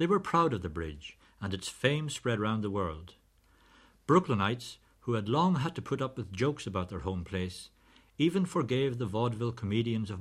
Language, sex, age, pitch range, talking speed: English, male, 60-79, 95-125 Hz, 195 wpm